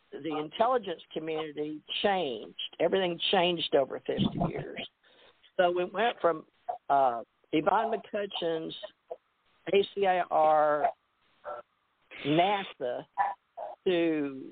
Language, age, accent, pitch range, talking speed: English, 50-69, American, 150-185 Hz, 80 wpm